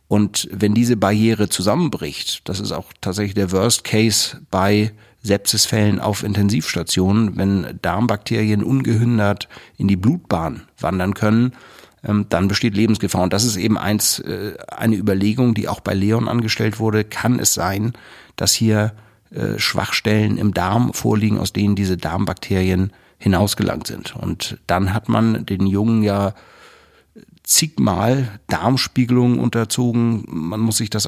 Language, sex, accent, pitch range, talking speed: German, male, German, 100-115 Hz, 135 wpm